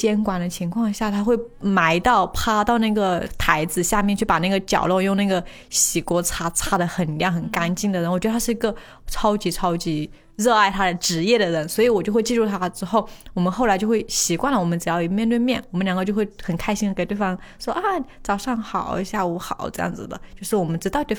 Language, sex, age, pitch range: Chinese, female, 20-39, 180-220 Hz